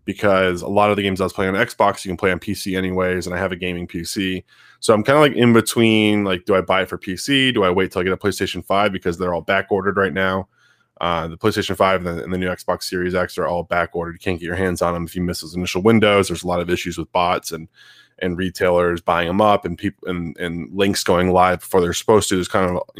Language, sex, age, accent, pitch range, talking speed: English, male, 20-39, American, 90-100 Hz, 285 wpm